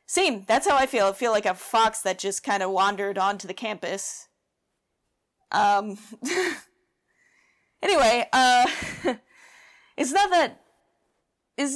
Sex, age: female, 30-49